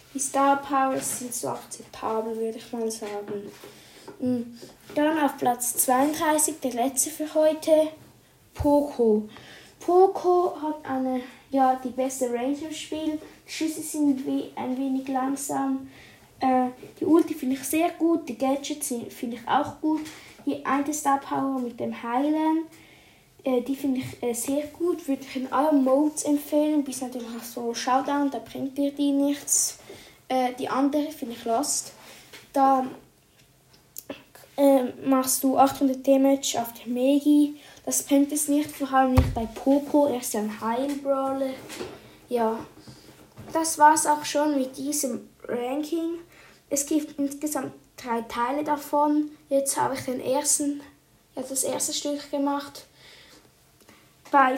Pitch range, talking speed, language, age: 255-300 Hz, 140 wpm, German, 10-29